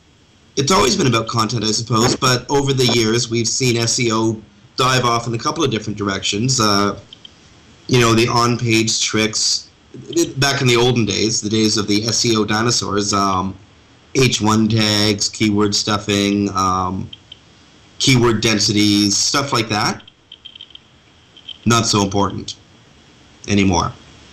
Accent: American